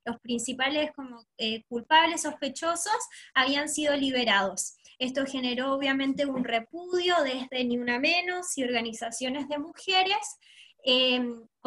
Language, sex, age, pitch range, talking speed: Spanish, female, 20-39, 255-330 Hz, 115 wpm